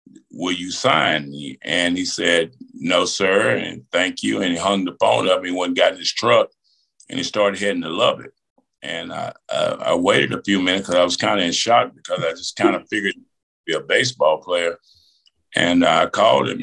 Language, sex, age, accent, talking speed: English, male, 50-69, American, 215 wpm